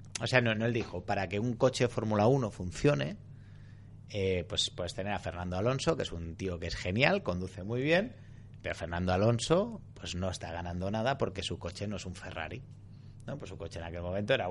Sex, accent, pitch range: male, Spanish, 95-120 Hz